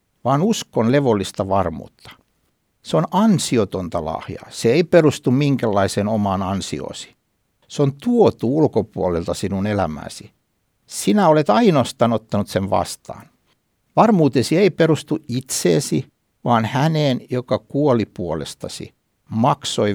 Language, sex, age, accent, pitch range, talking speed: Finnish, male, 60-79, native, 95-145 Hz, 110 wpm